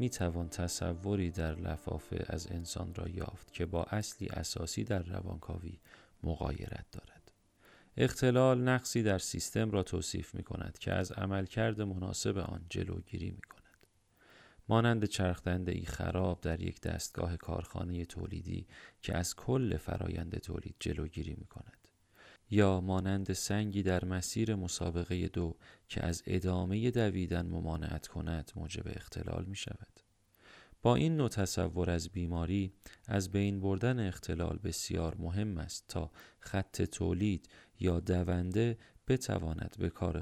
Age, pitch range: 40-59, 85-105 Hz